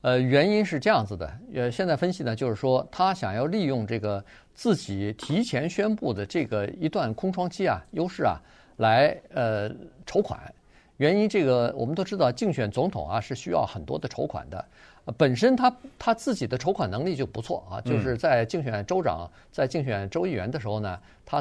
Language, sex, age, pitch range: Chinese, male, 50-69, 110-165 Hz